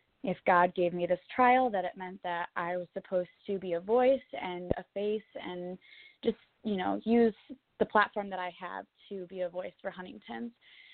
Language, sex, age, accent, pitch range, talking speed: English, female, 20-39, American, 185-230 Hz, 200 wpm